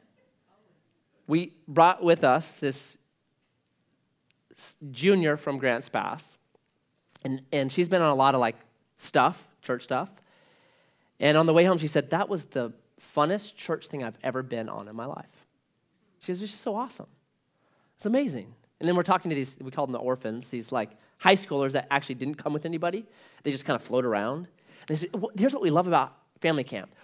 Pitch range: 135-205 Hz